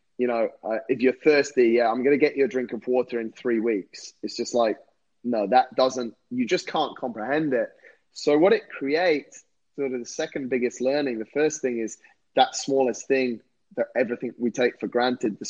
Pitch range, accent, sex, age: 120-140 Hz, British, male, 20-39